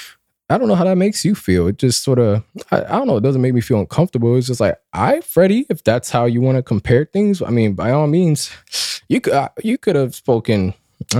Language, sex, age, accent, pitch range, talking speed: English, male, 20-39, American, 100-130 Hz, 240 wpm